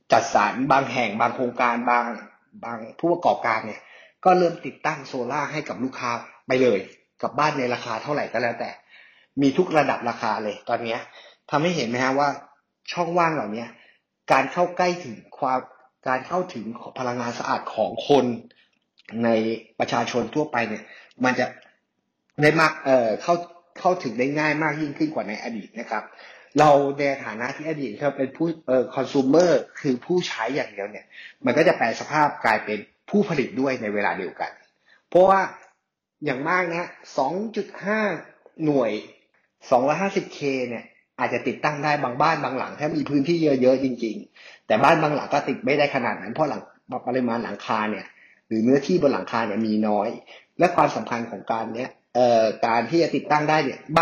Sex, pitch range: male, 120-155 Hz